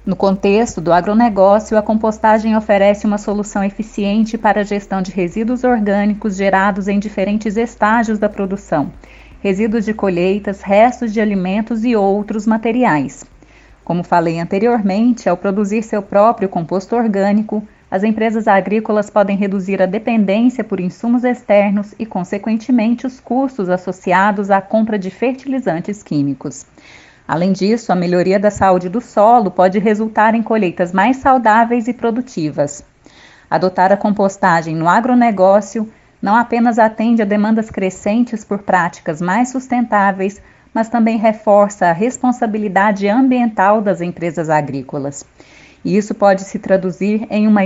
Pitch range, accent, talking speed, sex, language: 190-225 Hz, Brazilian, 135 wpm, female, Portuguese